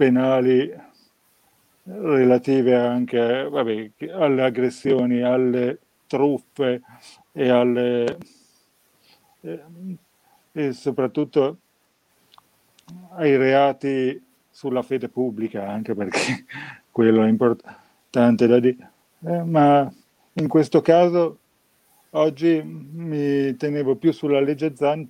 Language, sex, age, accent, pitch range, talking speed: Italian, male, 40-59, native, 120-150 Hz, 90 wpm